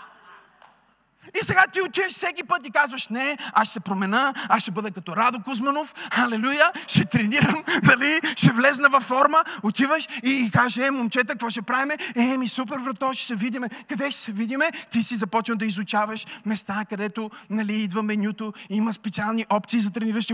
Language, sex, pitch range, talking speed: Bulgarian, male, 210-265 Hz, 180 wpm